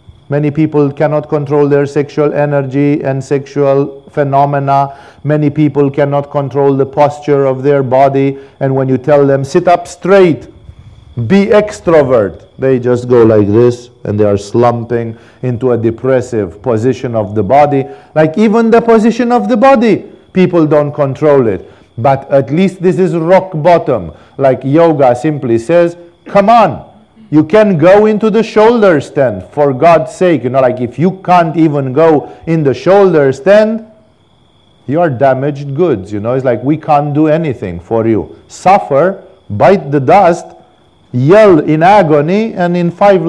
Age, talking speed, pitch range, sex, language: 50-69, 160 wpm, 135-180 Hz, male, English